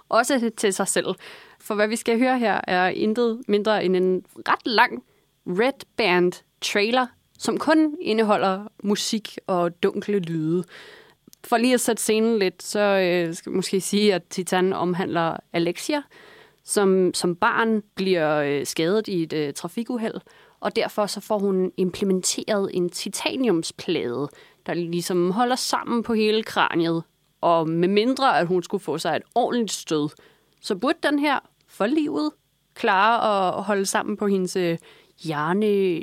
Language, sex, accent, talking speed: Danish, female, native, 150 wpm